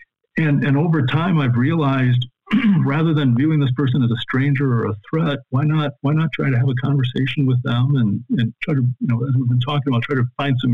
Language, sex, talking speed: English, male, 240 wpm